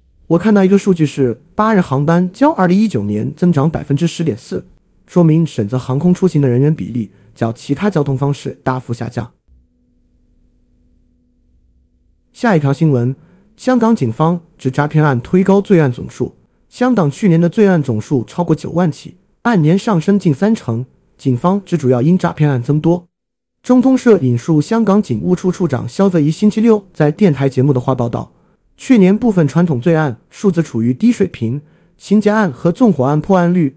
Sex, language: male, Chinese